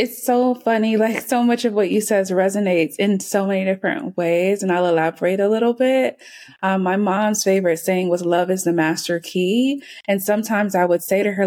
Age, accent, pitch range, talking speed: 20-39, American, 180-220 Hz, 210 wpm